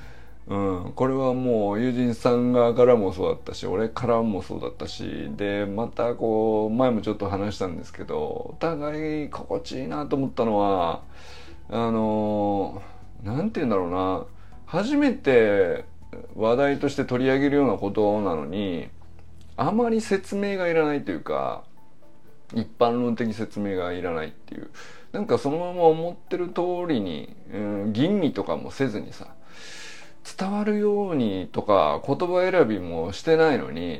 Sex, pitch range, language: male, 100-150 Hz, Japanese